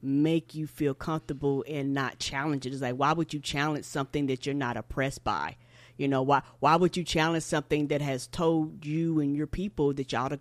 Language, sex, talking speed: English, female, 220 wpm